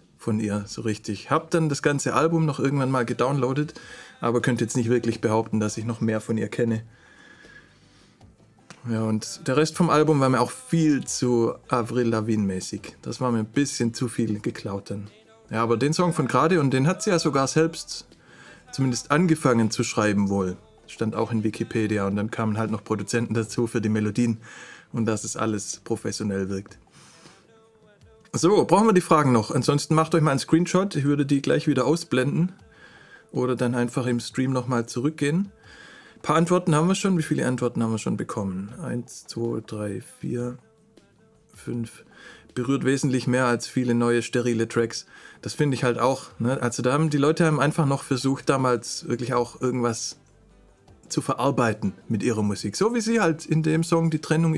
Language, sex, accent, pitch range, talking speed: German, male, German, 115-150 Hz, 190 wpm